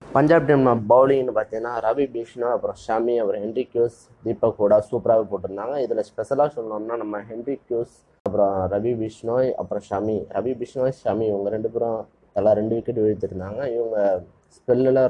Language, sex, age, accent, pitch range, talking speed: Tamil, male, 20-39, native, 100-120 Hz, 150 wpm